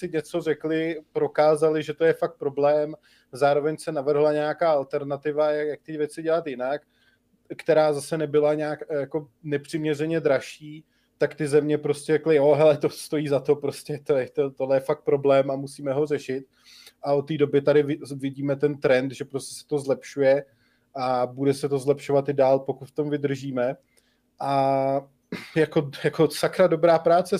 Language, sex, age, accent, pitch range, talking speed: Czech, male, 20-39, native, 145-165 Hz, 175 wpm